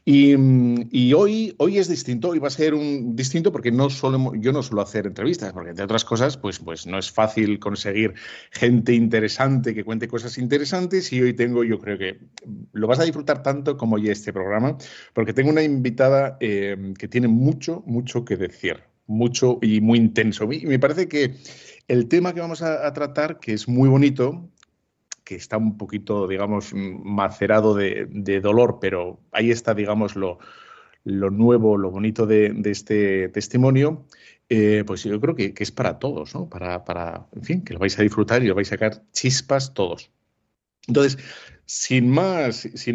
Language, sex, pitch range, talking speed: Spanish, male, 105-135 Hz, 185 wpm